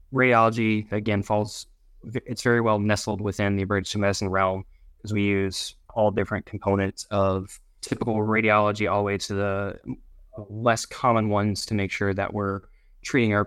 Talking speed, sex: 160 wpm, male